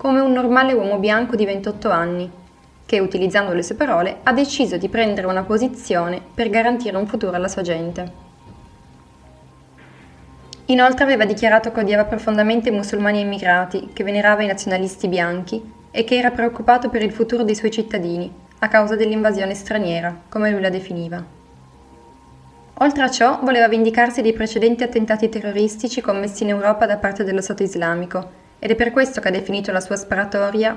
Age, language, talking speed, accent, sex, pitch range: 10-29, Italian, 165 wpm, native, female, 190-230 Hz